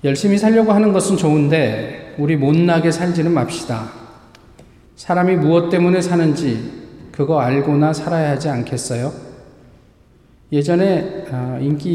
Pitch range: 125-175 Hz